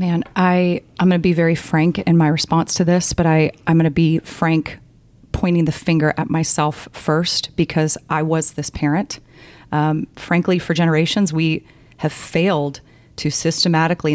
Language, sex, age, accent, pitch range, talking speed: English, female, 30-49, American, 150-175 Hz, 160 wpm